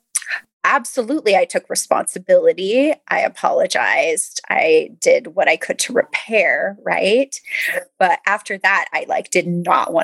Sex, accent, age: female, American, 20-39